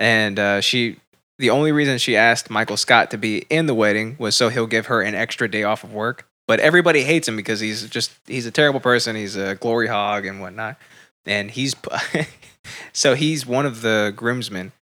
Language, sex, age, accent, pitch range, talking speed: English, male, 20-39, American, 110-170 Hz, 205 wpm